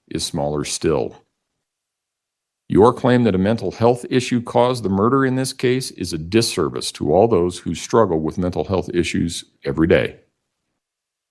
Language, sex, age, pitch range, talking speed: English, male, 50-69, 90-125 Hz, 160 wpm